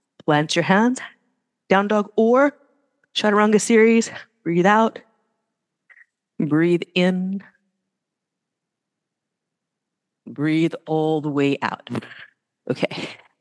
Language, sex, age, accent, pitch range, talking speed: English, female, 40-59, American, 160-230 Hz, 80 wpm